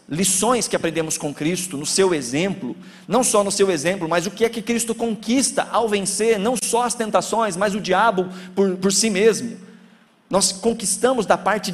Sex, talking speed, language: male, 190 wpm, Portuguese